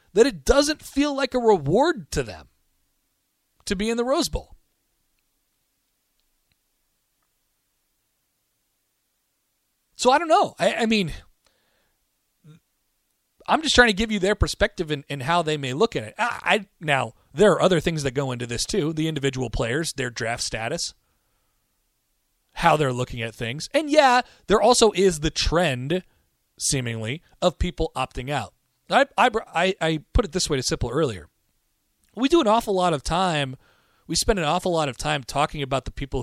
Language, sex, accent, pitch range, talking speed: English, male, American, 130-190 Hz, 165 wpm